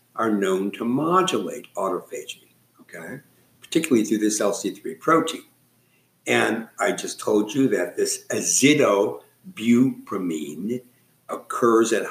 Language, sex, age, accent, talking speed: English, male, 60-79, American, 105 wpm